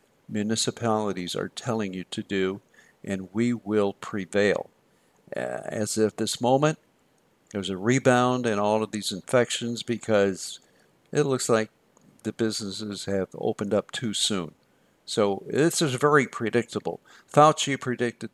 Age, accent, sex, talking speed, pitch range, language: 50-69, American, male, 130 wpm, 105-130 Hz, English